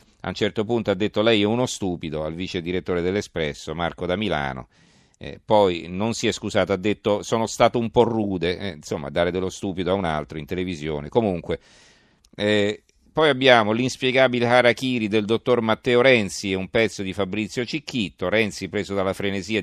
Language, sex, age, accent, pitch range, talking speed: Italian, male, 40-59, native, 95-115 Hz, 185 wpm